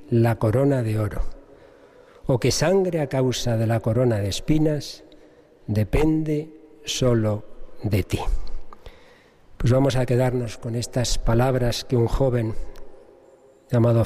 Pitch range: 115-145 Hz